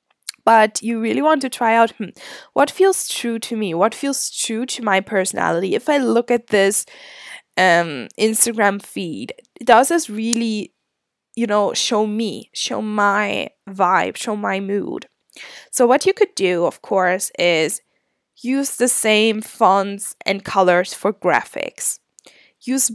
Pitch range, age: 205-255 Hz, 10-29